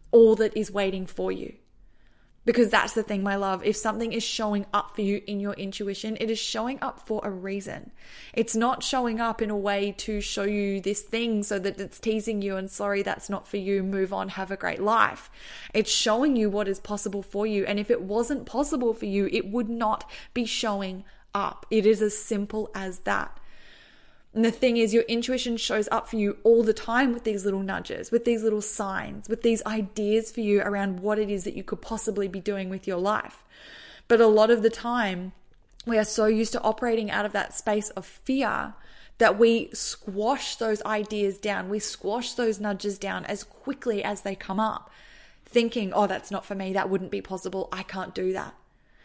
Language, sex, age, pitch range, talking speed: English, female, 20-39, 200-225 Hz, 210 wpm